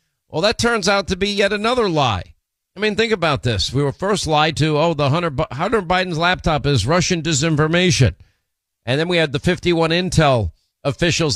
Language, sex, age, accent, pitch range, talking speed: English, male, 50-69, American, 135-165 Hz, 190 wpm